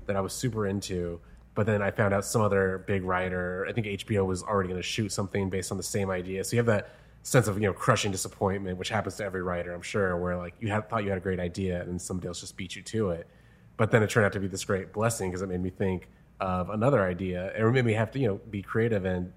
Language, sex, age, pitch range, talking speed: English, male, 30-49, 95-115 Hz, 280 wpm